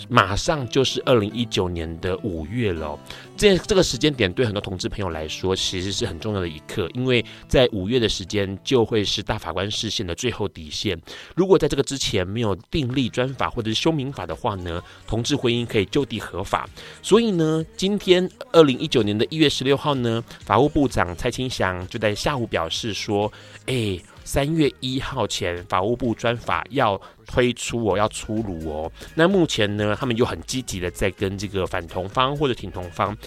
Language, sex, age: Chinese, male, 30-49